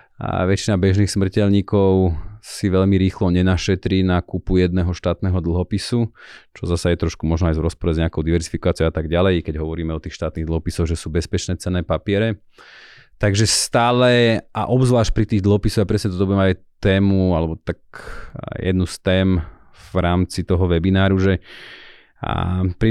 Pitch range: 90-105 Hz